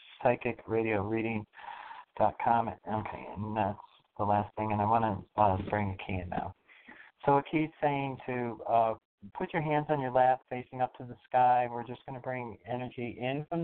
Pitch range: 115-135 Hz